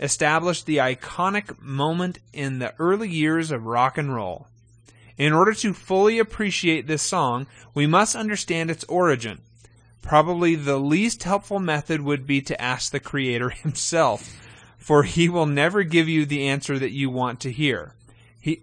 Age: 30-49